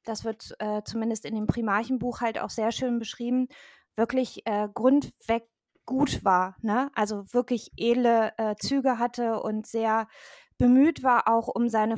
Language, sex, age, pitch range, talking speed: German, female, 20-39, 230-270 Hz, 155 wpm